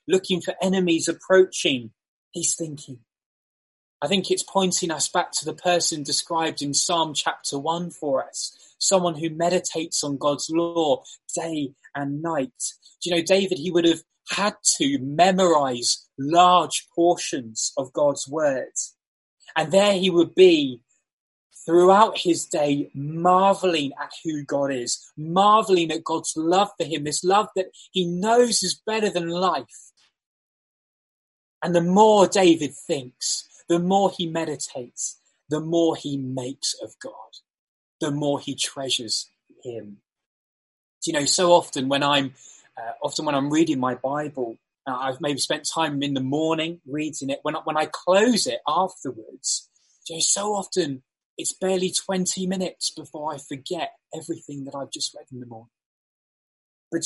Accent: British